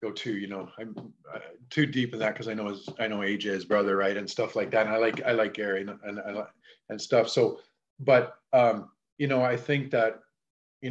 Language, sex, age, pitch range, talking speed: English, male, 40-59, 110-140 Hz, 230 wpm